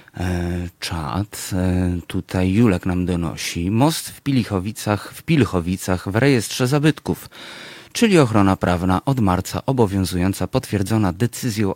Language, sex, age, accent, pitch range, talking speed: Polish, male, 30-49, native, 90-110 Hz, 100 wpm